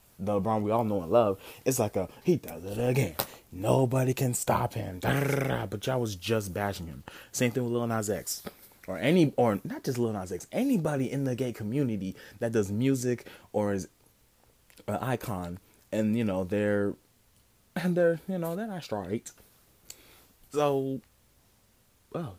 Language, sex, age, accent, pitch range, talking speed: English, male, 20-39, American, 100-135 Hz, 170 wpm